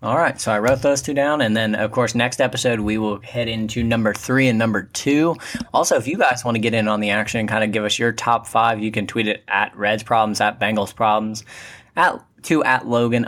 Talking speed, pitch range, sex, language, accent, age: 255 wpm, 105-125 Hz, male, English, American, 10-29